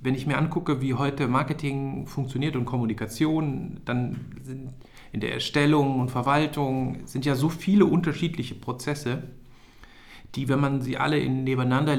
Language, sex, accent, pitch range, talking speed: German, male, German, 125-150 Hz, 150 wpm